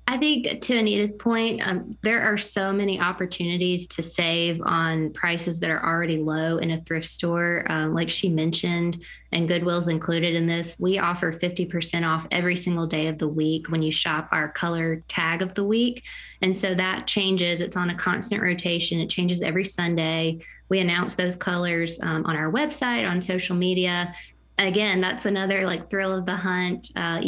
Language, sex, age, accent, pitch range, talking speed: English, female, 20-39, American, 170-195 Hz, 185 wpm